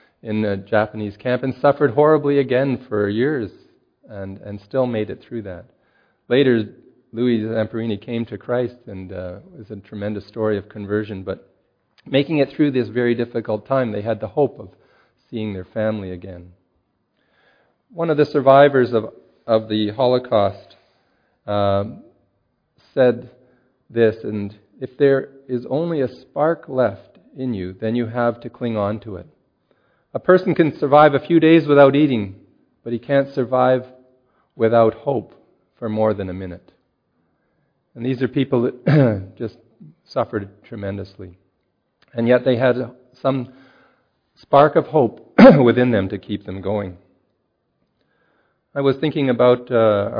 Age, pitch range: 40-59, 100-130 Hz